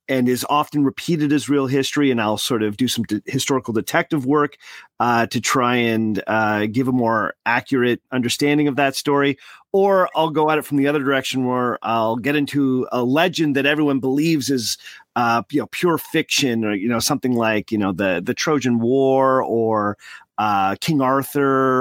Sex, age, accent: male, 40-59, American